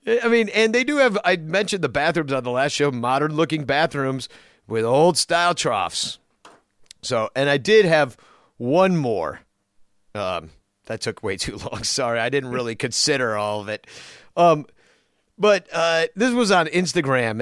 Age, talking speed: 40-59, 160 wpm